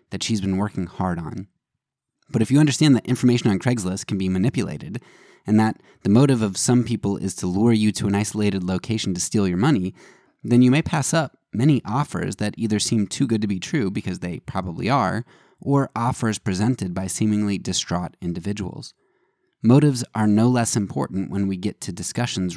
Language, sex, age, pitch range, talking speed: English, male, 20-39, 95-120 Hz, 190 wpm